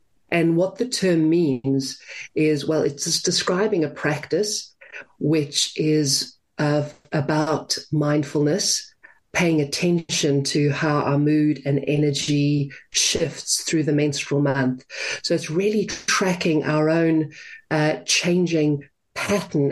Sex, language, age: female, English, 40-59